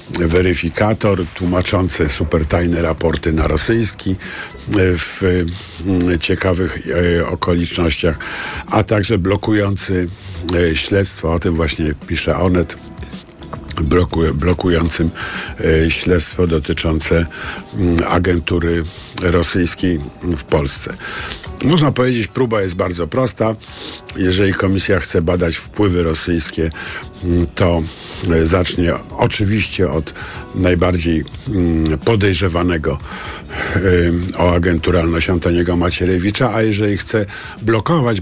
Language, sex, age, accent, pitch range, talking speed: Polish, male, 50-69, native, 85-100 Hz, 80 wpm